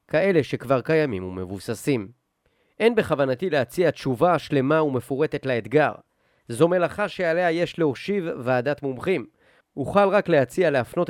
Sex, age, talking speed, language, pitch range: male, 30-49, 120 wpm, Hebrew, 125-160 Hz